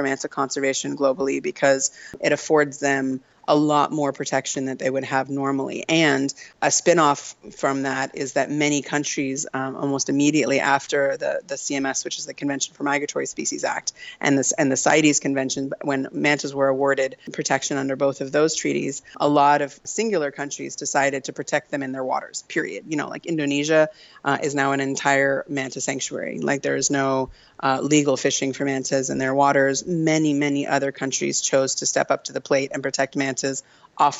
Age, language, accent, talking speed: 30-49, English, American, 190 wpm